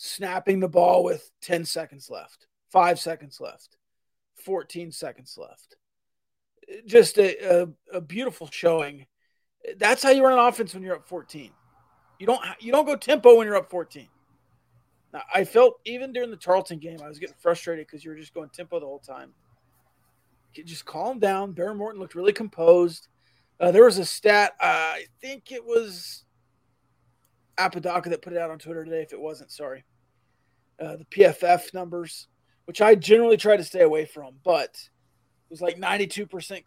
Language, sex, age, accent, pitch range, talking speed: English, male, 30-49, American, 155-195 Hz, 180 wpm